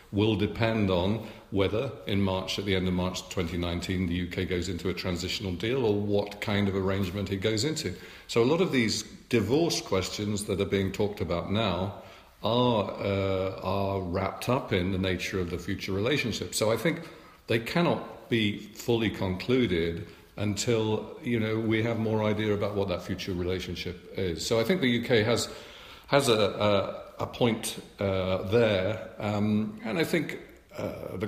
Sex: male